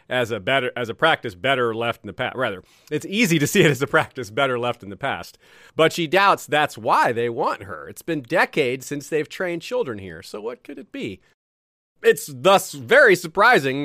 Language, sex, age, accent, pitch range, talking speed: English, male, 40-59, American, 125-165 Hz, 215 wpm